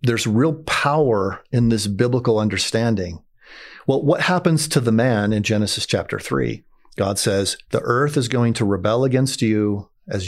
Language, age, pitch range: English, 40-59, 105-125 Hz